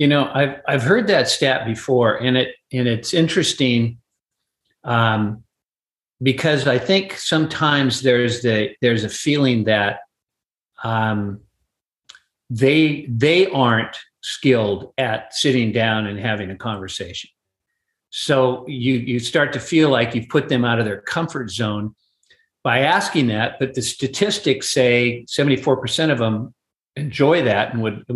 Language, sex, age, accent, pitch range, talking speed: English, male, 50-69, American, 115-150 Hz, 140 wpm